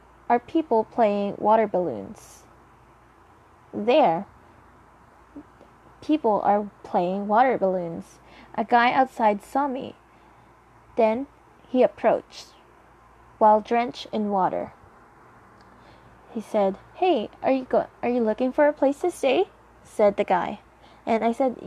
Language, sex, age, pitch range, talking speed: English, female, 20-39, 215-275 Hz, 120 wpm